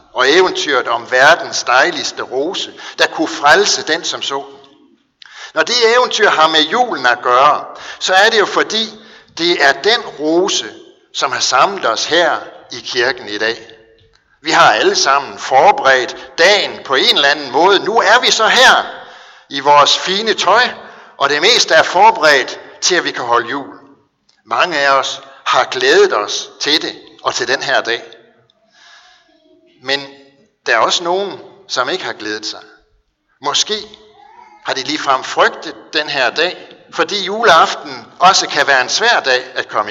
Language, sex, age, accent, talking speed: Danish, male, 60-79, native, 165 wpm